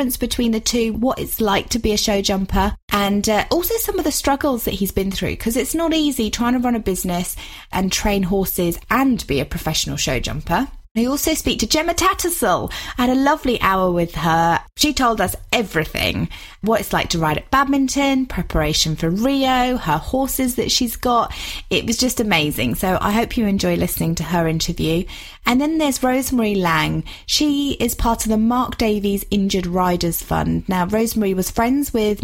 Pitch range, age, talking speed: 175-245 Hz, 30-49, 195 wpm